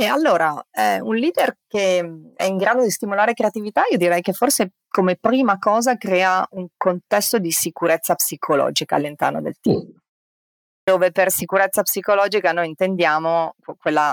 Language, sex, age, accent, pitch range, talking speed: Italian, female, 30-49, native, 155-185 Hz, 150 wpm